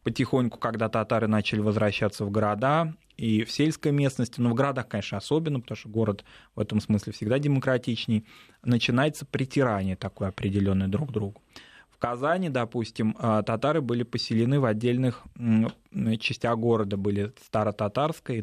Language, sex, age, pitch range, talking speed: Russian, male, 20-39, 110-135 Hz, 145 wpm